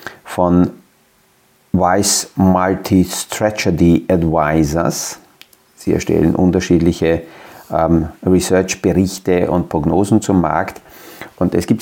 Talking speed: 80 wpm